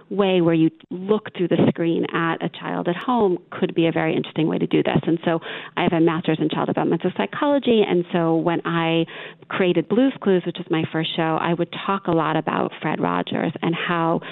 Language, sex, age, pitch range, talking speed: English, female, 40-59, 165-180 Hz, 225 wpm